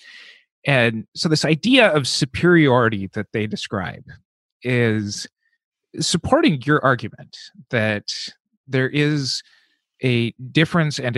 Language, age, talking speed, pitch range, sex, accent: English, 30-49, 100 wpm, 105-140 Hz, male, American